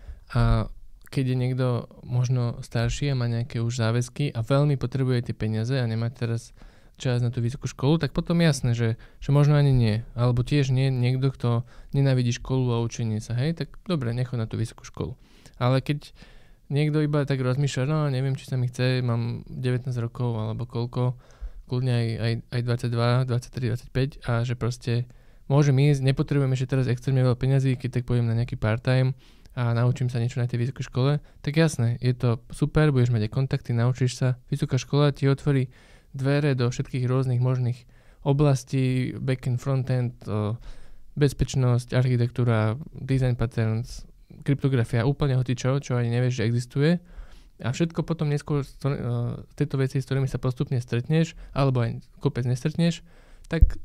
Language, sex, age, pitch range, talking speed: Slovak, male, 20-39, 120-140 Hz, 165 wpm